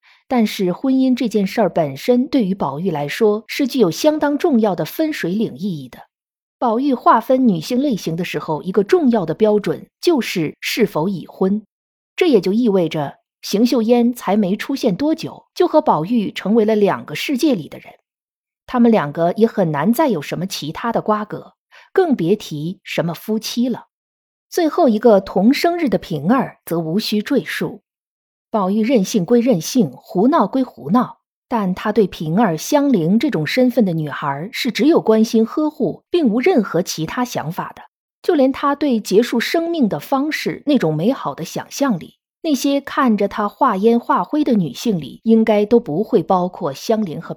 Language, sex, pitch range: Chinese, female, 190-255 Hz